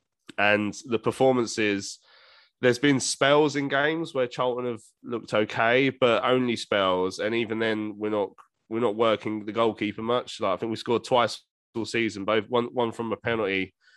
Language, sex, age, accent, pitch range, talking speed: English, male, 20-39, British, 100-120 Hz, 175 wpm